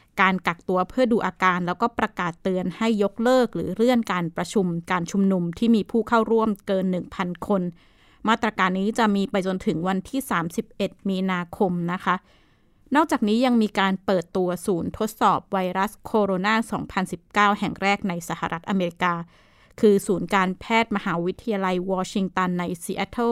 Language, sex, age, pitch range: Thai, female, 20-39, 185-225 Hz